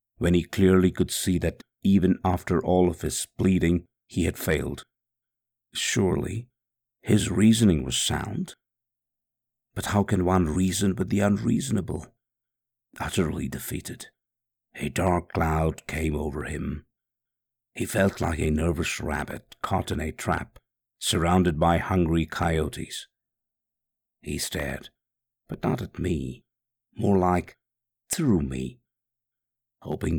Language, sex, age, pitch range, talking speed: English, male, 50-69, 85-115 Hz, 120 wpm